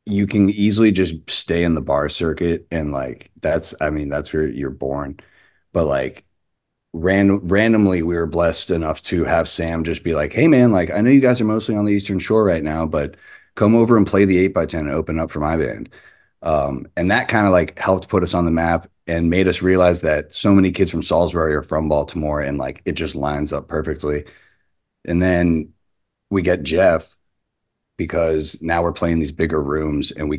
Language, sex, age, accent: English, male, 30-49, American